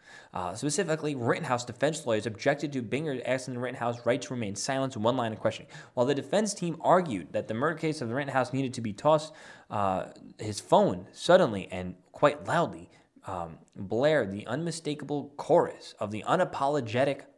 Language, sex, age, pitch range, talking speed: English, male, 20-39, 125-165 Hz, 175 wpm